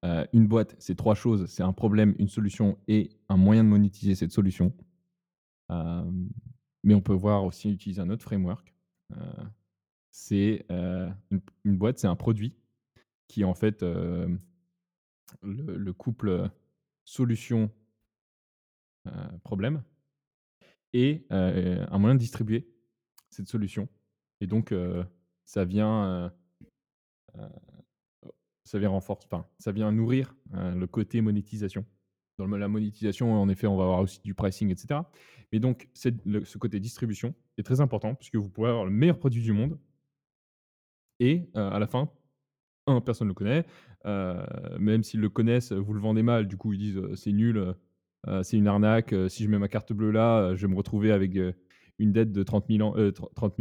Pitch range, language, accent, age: 95-115 Hz, French, French, 20-39